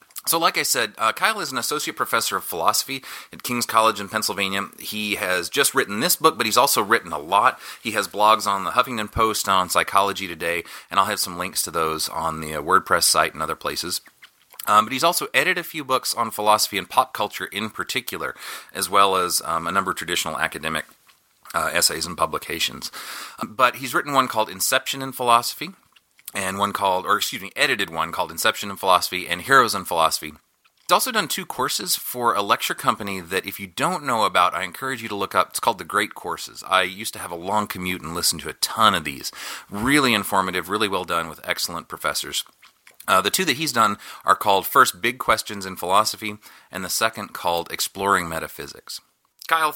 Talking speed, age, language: 210 wpm, 30-49, English